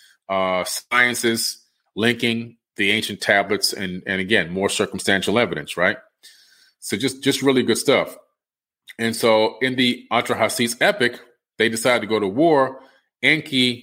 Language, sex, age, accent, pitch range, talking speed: English, male, 30-49, American, 95-120 Hz, 140 wpm